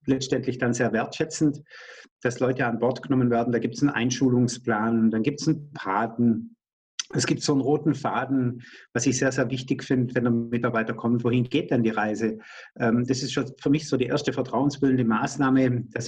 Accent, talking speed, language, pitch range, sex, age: German, 200 wpm, German, 120-140 Hz, male, 50-69